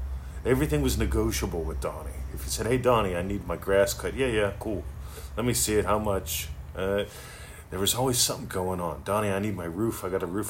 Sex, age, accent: male, 40-59, American